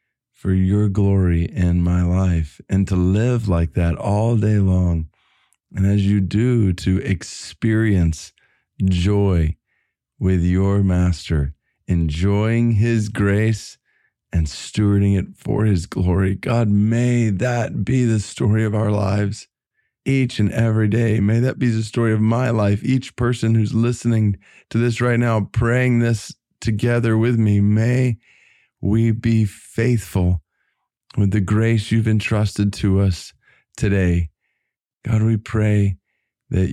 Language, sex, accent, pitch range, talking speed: English, male, American, 95-115 Hz, 135 wpm